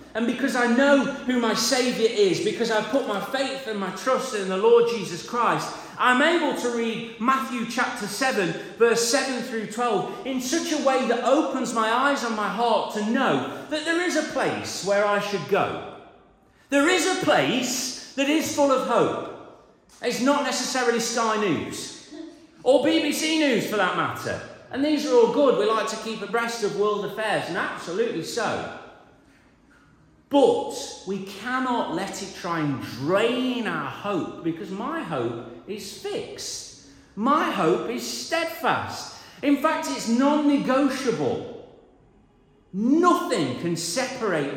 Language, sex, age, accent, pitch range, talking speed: English, male, 40-59, British, 205-285 Hz, 155 wpm